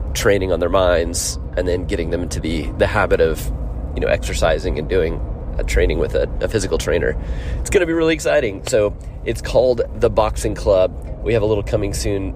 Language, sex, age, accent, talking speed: English, male, 30-49, American, 210 wpm